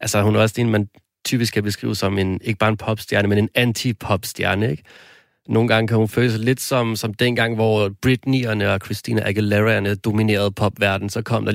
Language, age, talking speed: Danish, 30-49, 210 wpm